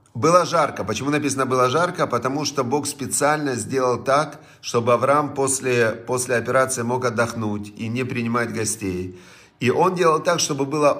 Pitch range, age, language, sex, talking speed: 115-150 Hz, 40-59, Russian, male, 160 wpm